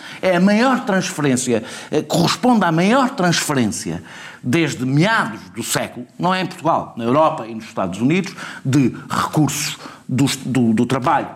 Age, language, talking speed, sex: 50-69, Portuguese, 150 wpm, male